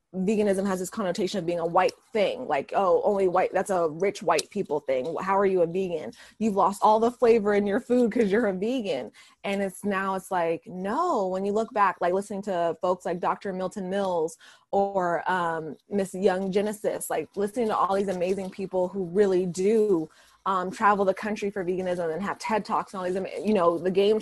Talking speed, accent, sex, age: 215 wpm, American, female, 20-39